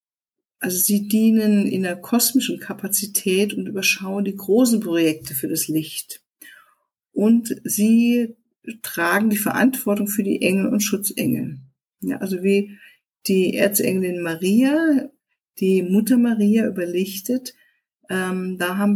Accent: German